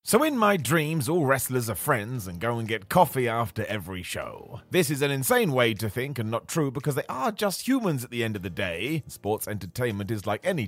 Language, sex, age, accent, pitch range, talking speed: English, male, 30-49, British, 115-175 Hz, 235 wpm